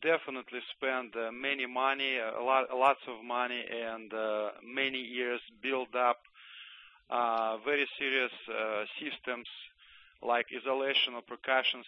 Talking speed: 120 wpm